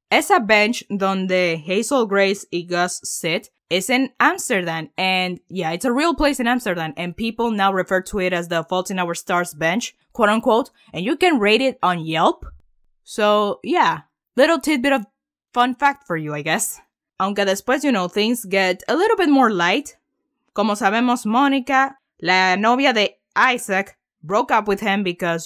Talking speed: 175 wpm